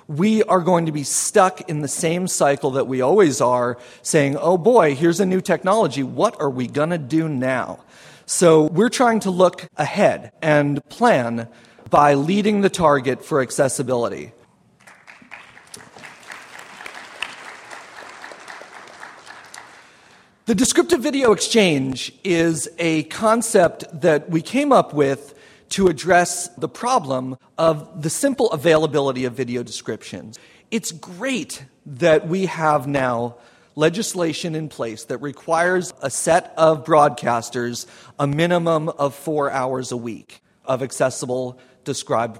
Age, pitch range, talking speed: 40-59, 130-175 Hz, 125 wpm